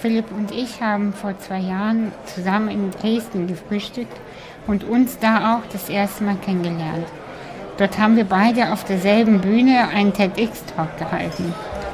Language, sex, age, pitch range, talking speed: German, female, 60-79, 190-225 Hz, 145 wpm